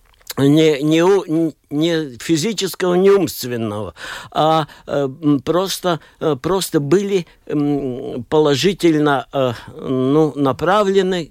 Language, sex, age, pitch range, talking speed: Russian, male, 60-79, 145-185 Hz, 95 wpm